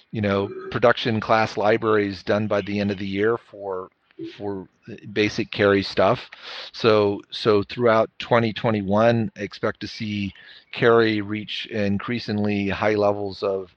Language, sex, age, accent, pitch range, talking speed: English, male, 40-59, American, 105-140 Hz, 130 wpm